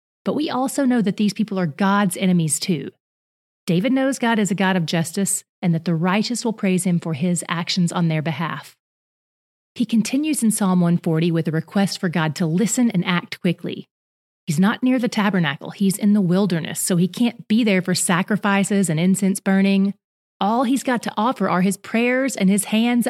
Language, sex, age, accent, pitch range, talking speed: English, female, 30-49, American, 175-210 Hz, 200 wpm